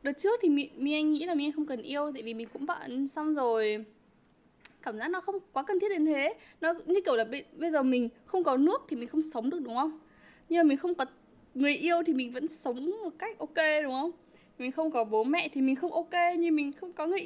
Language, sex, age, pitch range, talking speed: Vietnamese, female, 10-29, 245-320 Hz, 255 wpm